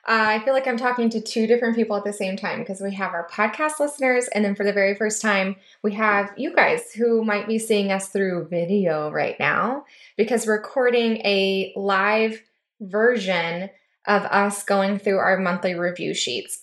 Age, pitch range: 10-29, 205-245 Hz